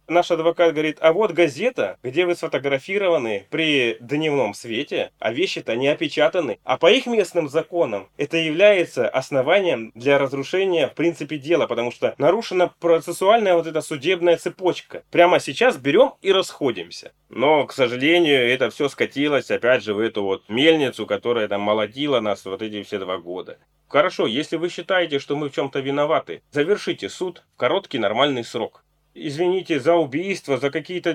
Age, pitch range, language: 20-39, 145-180 Hz, Russian